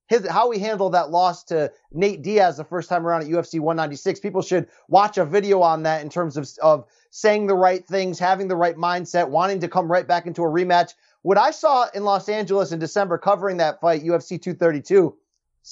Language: English